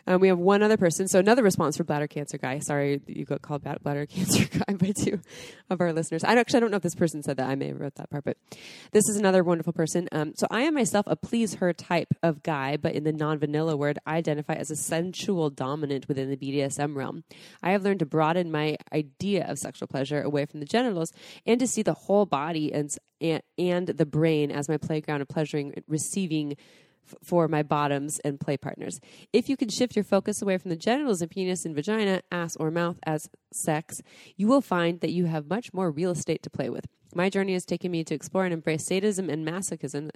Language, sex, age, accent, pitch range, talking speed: English, female, 20-39, American, 150-185 Hz, 230 wpm